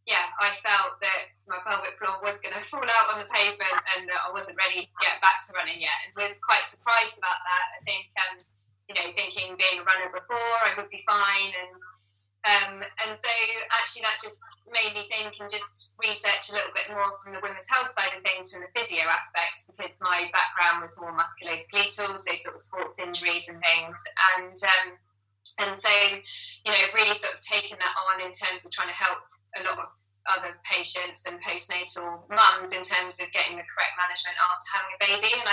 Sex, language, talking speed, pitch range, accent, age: female, English, 210 wpm, 175-205 Hz, British, 20-39